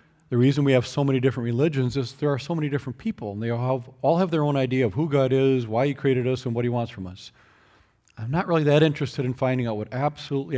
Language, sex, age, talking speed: English, male, 40-59, 265 wpm